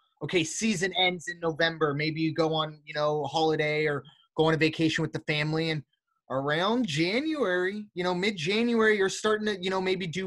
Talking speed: 200 wpm